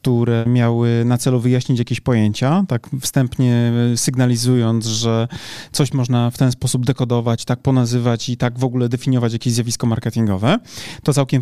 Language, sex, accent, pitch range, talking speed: Polish, male, native, 120-140 Hz, 150 wpm